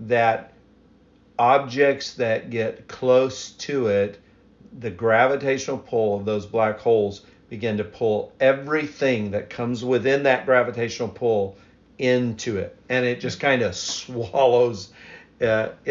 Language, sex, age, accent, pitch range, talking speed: English, male, 50-69, American, 115-130 Hz, 125 wpm